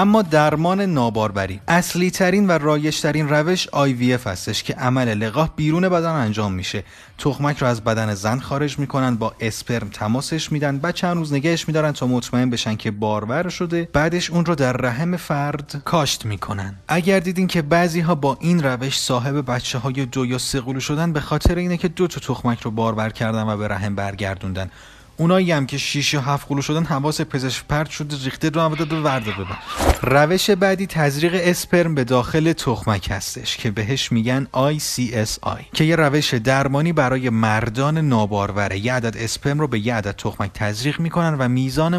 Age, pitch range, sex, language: 30-49, 115-155 Hz, male, Persian